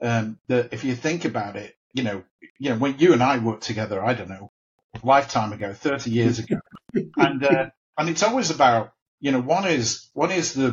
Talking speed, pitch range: 220 wpm, 115-140 Hz